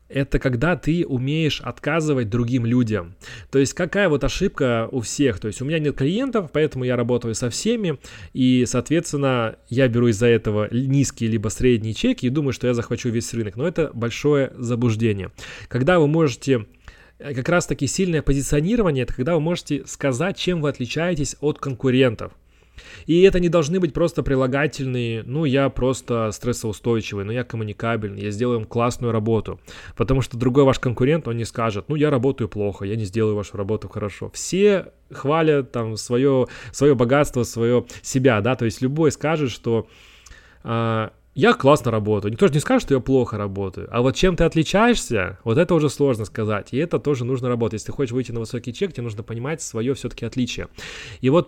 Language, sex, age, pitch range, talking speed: Russian, male, 20-39, 110-140 Hz, 180 wpm